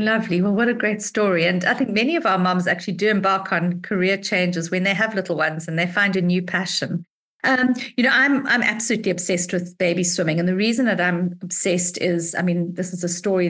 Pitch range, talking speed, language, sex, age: 175-200 Hz, 235 wpm, English, female, 50-69